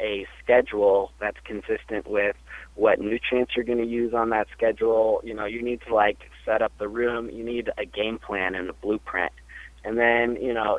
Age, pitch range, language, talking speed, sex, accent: 30-49, 105-130 Hz, English, 200 wpm, male, American